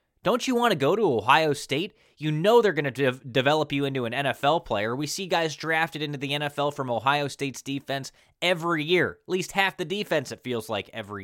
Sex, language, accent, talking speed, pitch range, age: male, English, American, 220 wpm, 135-185 Hz, 20-39